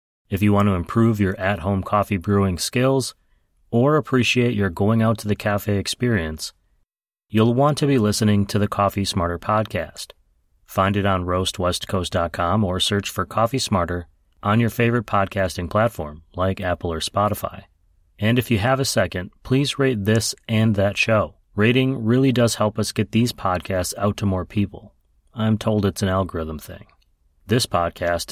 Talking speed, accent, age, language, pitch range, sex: 165 wpm, American, 30-49, English, 90-115 Hz, male